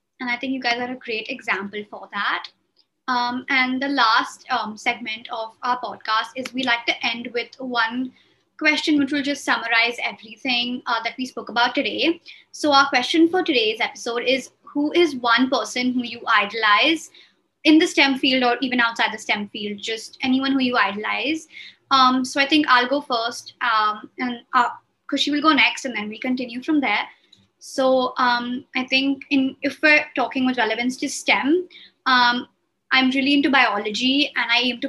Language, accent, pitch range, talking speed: English, Indian, 230-280 Hz, 185 wpm